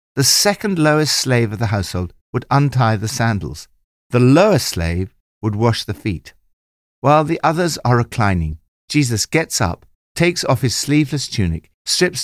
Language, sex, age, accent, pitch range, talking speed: English, male, 60-79, British, 90-145 Hz, 155 wpm